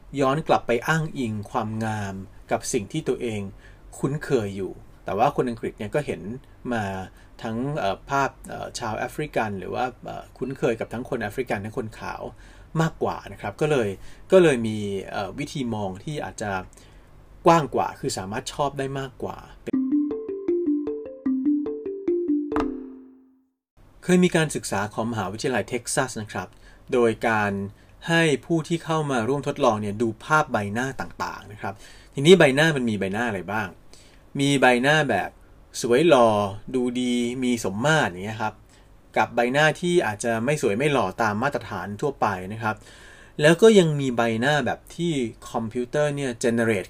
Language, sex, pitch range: Thai, male, 110-150 Hz